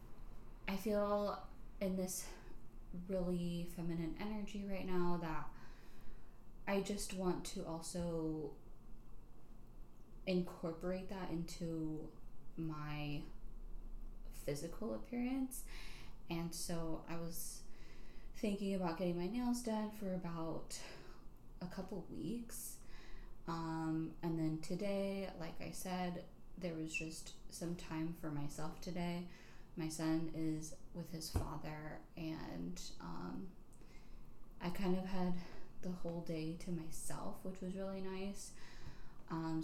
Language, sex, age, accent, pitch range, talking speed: English, female, 10-29, American, 160-195 Hz, 110 wpm